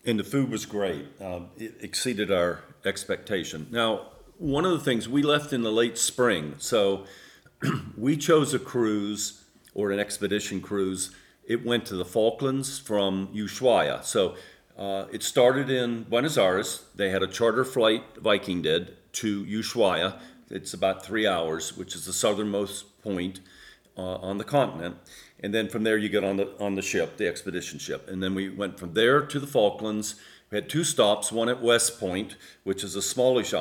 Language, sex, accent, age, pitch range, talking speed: English, male, American, 40-59, 95-115 Hz, 180 wpm